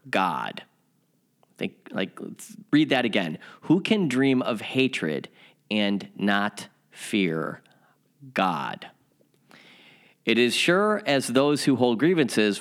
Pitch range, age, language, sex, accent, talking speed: 100-125 Hz, 40-59, English, male, American, 115 wpm